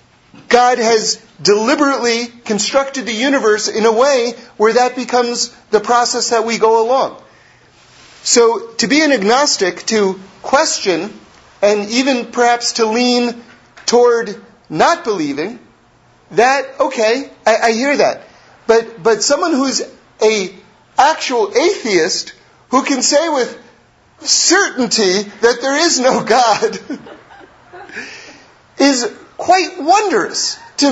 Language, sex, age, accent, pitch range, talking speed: English, male, 40-59, American, 230-335 Hz, 115 wpm